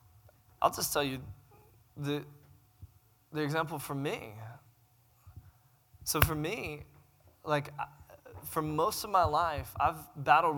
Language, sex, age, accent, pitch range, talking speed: English, male, 20-39, American, 120-155 Hz, 115 wpm